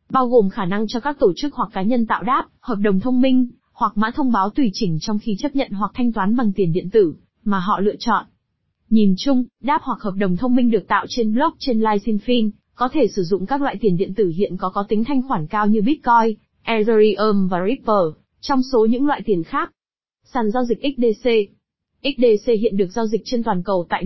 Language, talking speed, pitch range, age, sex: Vietnamese, 225 wpm, 205-250 Hz, 20-39, female